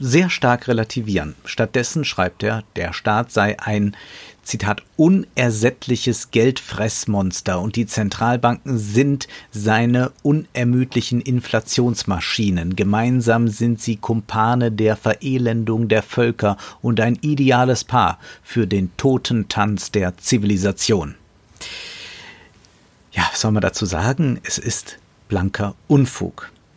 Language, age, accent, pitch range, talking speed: German, 50-69, German, 105-125 Hz, 105 wpm